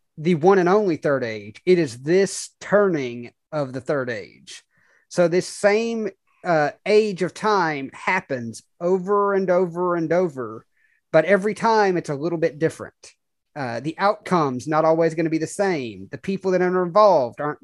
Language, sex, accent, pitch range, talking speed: English, male, American, 150-190 Hz, 175 wpm